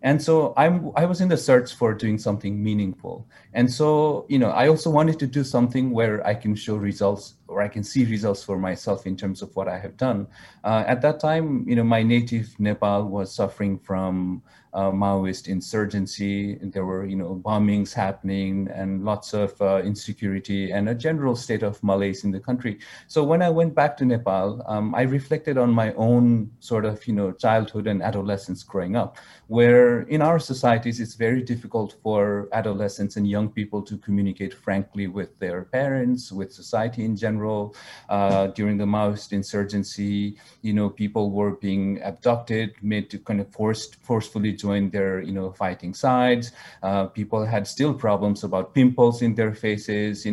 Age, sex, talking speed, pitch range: 30-49, male, 185 wpm, 100-120 Hz